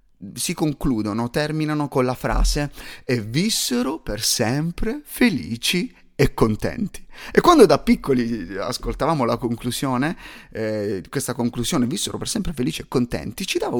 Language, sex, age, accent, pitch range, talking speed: Italian, male, 30-49, native, 120-180 Hz, 135 wpm